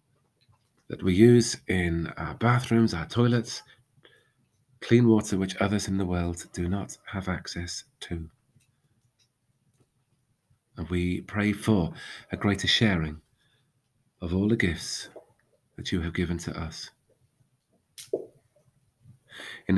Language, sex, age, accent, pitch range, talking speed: English, male, 40-59, British, 90-120 Hz, 115 wpm